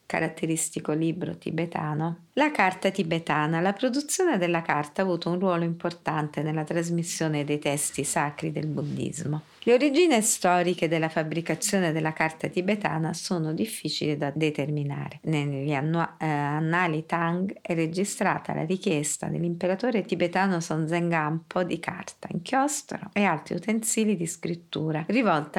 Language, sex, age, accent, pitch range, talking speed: Italian, female, 50-69, native, 155-185 Hz, 130 wpm